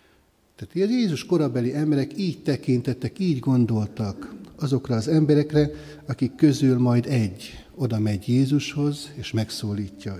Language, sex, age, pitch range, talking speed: Hungarian, male, 60-79, 120-155 Hz, 120 wpm